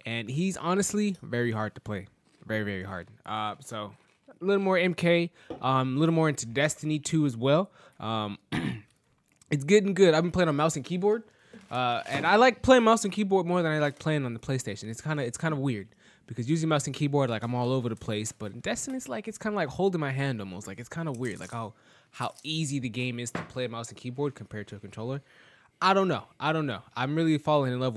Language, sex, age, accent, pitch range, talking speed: English, male, 20-39, American, 115-160 Hz, 245 wpm